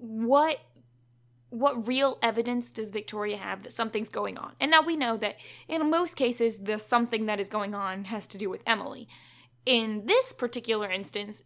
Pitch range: 195-230 Hz